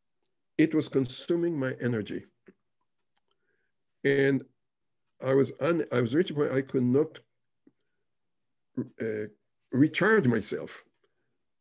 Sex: male